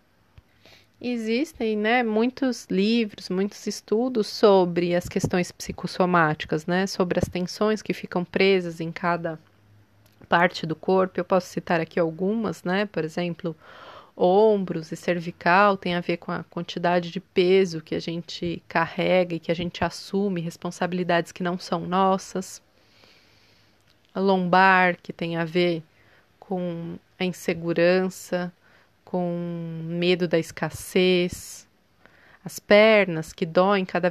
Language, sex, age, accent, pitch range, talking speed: Portuguese, female, 20-39, Brazilian, 165-190 Hz, 125 wpm